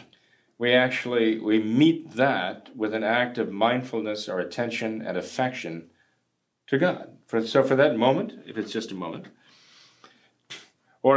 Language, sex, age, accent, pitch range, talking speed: English, male, 40-59, American, 105-130 Hz, 145 wpm